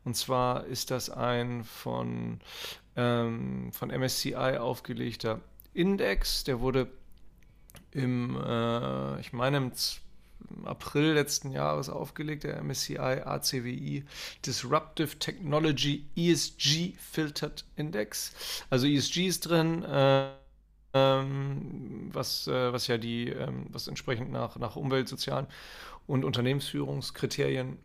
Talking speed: 110 wpm